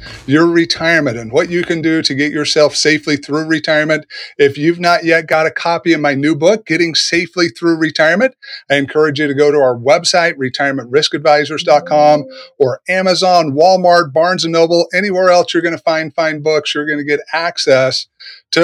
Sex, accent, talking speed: male, American, 180 wpm